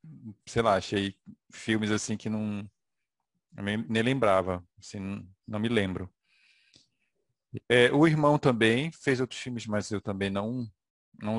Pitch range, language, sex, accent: 100-125 Hz, Portuguese, male, Brazilian